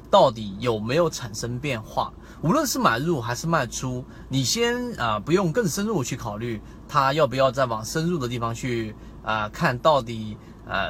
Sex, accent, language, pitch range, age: male, native, Chinese, 115-175 Hz, 30-49